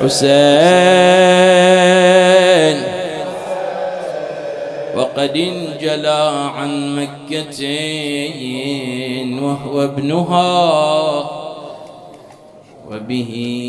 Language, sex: English, male